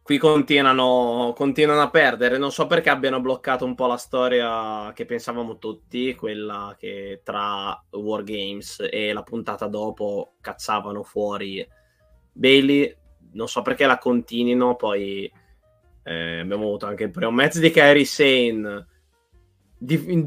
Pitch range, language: 115-150 Hz, Italian